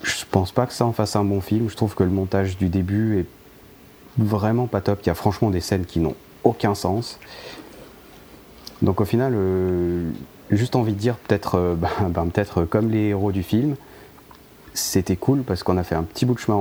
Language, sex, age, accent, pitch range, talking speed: French, male, 30-49, French, 85-100 Hz, 215 wpm